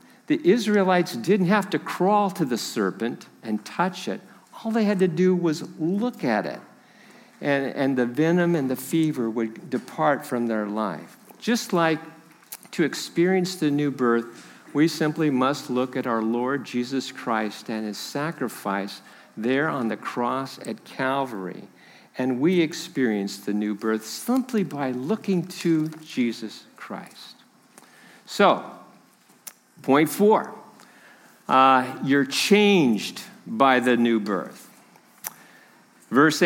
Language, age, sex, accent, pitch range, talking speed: English, 50-69, male, American, 120-180 Hz, 135 wpm